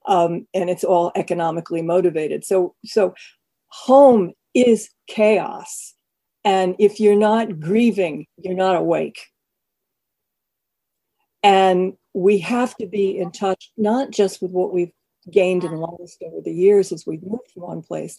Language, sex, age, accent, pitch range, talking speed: English, female, 50-69, American, 185-225 Hz, 140 wpm